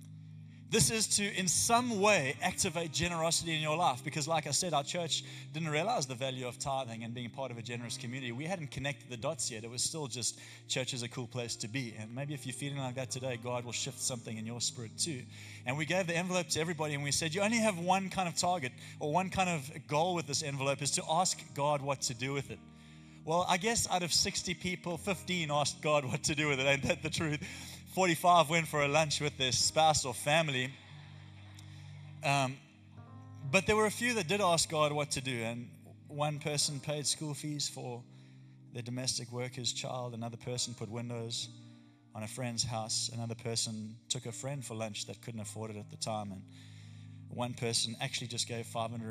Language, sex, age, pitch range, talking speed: English, male, 20-39, 115-155 Hz, 220 wpm